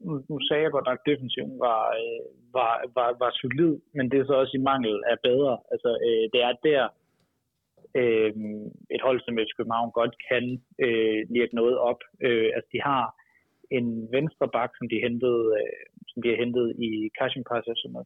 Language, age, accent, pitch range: Danish, 30-49, native, 120-145 Hz